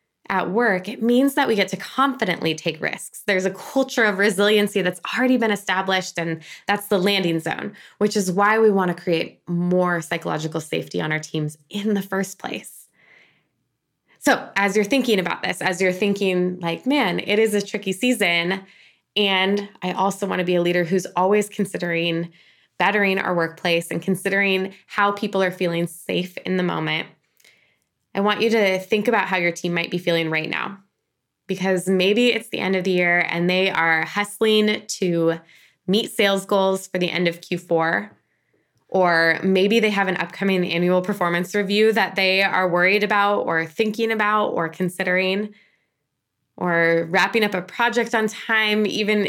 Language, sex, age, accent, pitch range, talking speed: English, female, 20-39, American, 180-210 Hz, 175 wpm